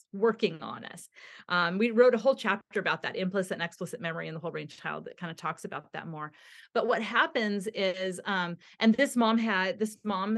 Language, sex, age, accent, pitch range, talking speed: English, female, 30-49, American, 180-230 Hz, 220 wpm